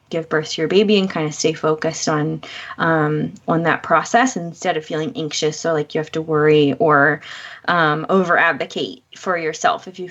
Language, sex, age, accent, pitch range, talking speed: English, female, 20-39, American, 165-205 Hz, 195 wpm